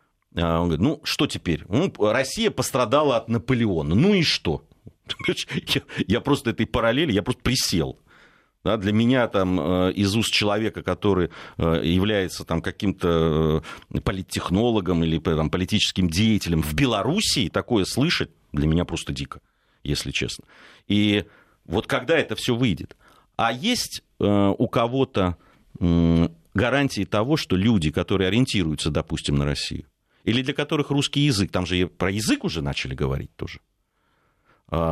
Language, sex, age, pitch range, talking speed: Russian, male, 40-59, 85-115 Hz, 135 wpm